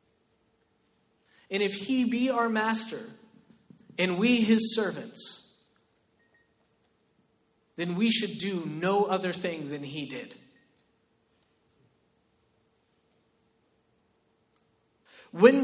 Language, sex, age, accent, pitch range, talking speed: English, male, 30-49, American, 195-260 Hz, 80 wpm